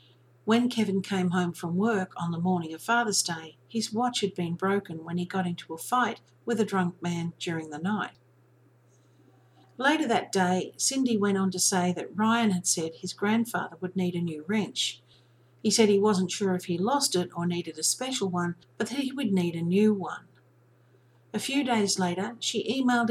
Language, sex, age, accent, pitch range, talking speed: English, female, 50-69, Australian, 165-215 Hz, 200 wpm